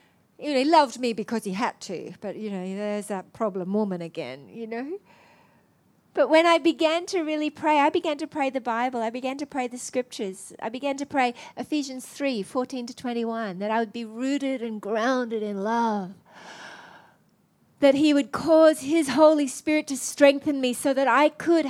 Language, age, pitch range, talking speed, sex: English, 40-59, 255-330 Hz, 195 wpm, female